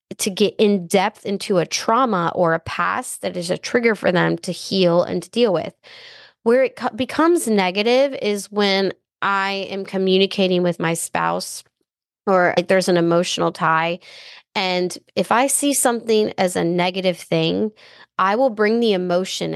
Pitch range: 180-215 Hz